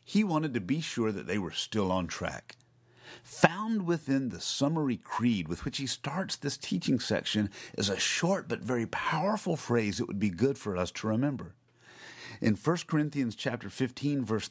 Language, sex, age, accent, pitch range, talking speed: English, male, 50-69, American, 110-150 Hz, 180 wpm